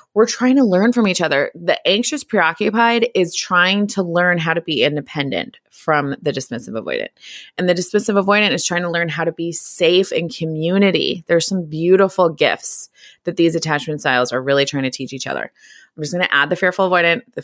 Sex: female